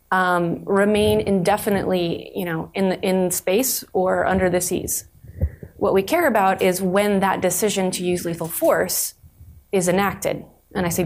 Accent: American